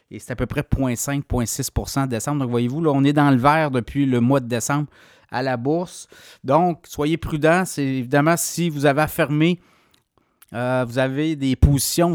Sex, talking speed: male, 195 wpm